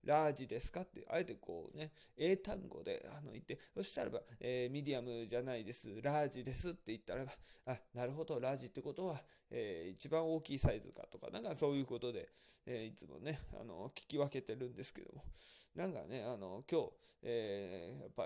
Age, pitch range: 20-39, 120-155 Hz